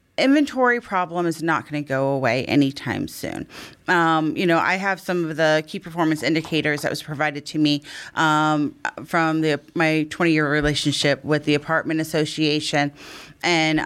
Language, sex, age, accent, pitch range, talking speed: English, female, 30-49, American, 150-185 Hz, 155 wpm